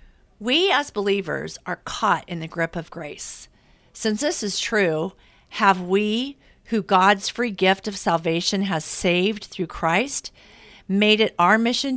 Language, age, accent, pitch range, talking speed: English, 50-69, American, 170-220 Hz, 150 wpm